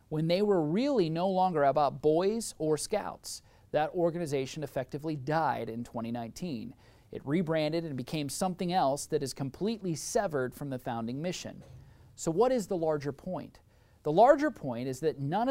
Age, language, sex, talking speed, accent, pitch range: 40-59, English, male, 165 wpm, American, 135-195 Hz